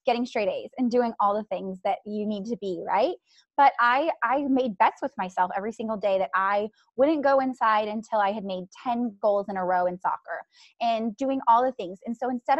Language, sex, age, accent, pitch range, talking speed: English, female, 20-39, American, 210-265 Hz, 230 wpm